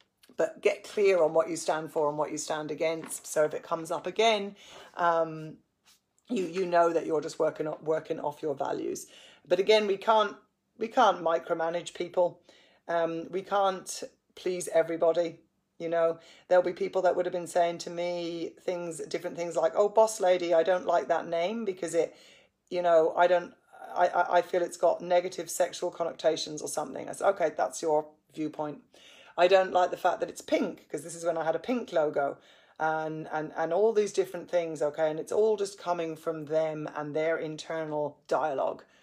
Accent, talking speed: British, 195 wpm